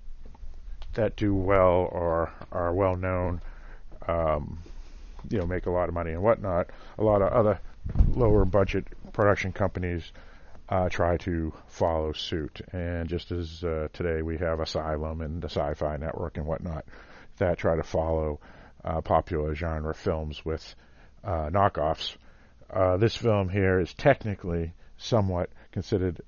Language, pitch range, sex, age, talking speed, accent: English, 80-95 Hz, male, 50-69, 140 wpm, American